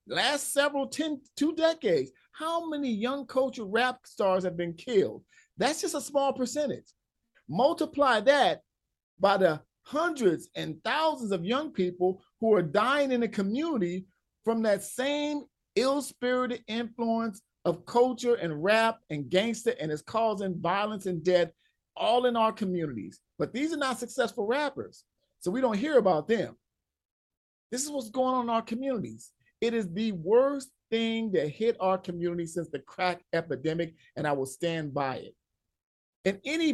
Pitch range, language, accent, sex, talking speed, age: 175-260 Hz, English, American, male, 160 wpm, 50-69